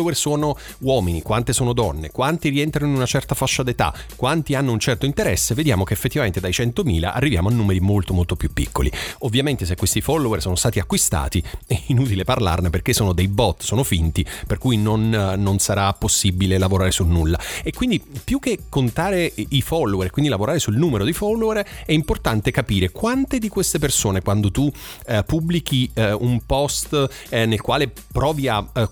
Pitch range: 95-145 Hz